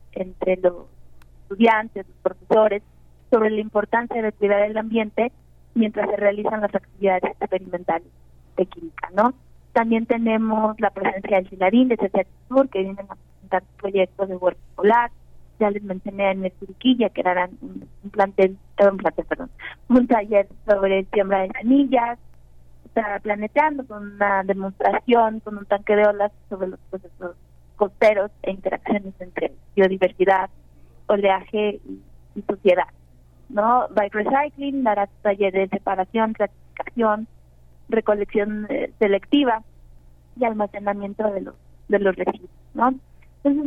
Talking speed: 135 wpm